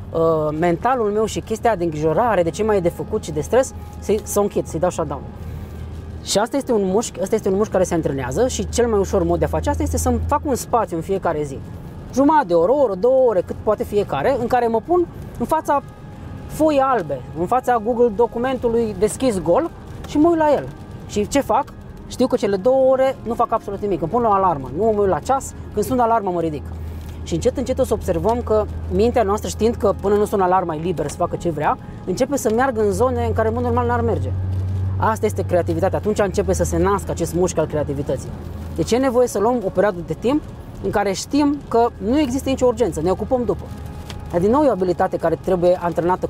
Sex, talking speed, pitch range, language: female, 235 wpm, 160-235 Hz, Romanian